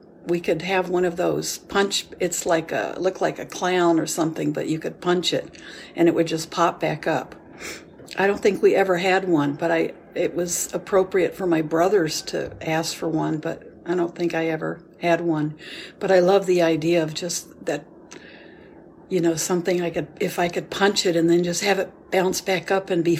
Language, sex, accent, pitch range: English, female, American, 165-195 Hz